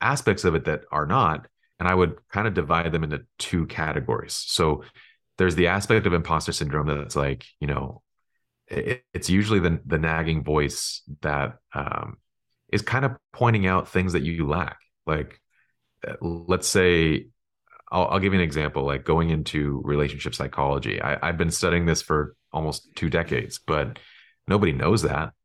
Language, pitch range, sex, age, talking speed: English, 70-90 Hz, male, 30-49, 170 wpm